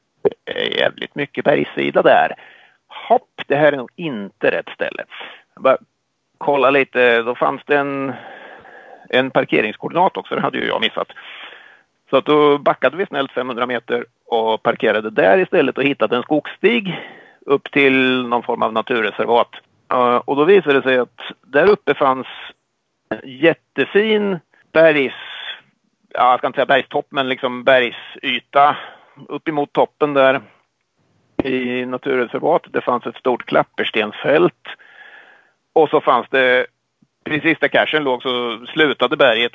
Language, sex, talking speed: Swedish, male, 140 wpm